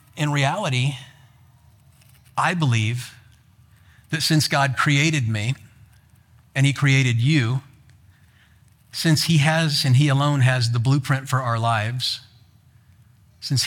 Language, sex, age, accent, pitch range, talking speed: English, male, 50-69, American, 115-150 Hz, 115 wpm